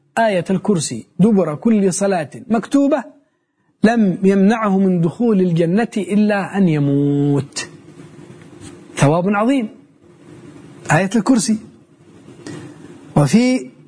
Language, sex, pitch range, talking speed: Arabic, male, 155-220 Hz, 80 wpm